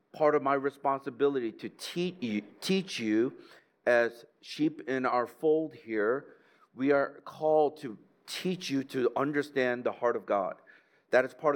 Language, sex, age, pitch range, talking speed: English, male, 50-69, 130-160 Hz, 150 wpm